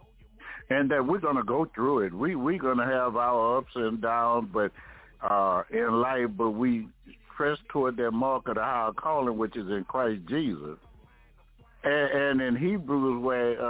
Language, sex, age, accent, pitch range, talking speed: English, male, 60-79, American, 115-135 Hz, 165 wpm